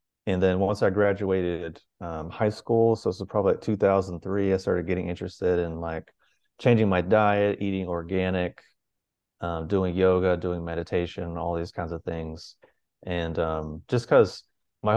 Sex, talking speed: male, 155 wpm